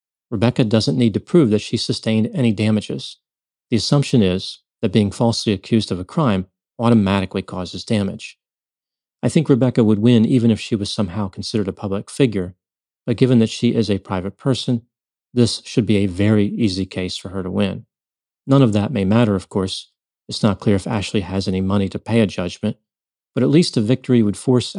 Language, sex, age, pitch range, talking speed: English, male, 40-59, 100-125 Hz, 200 wpm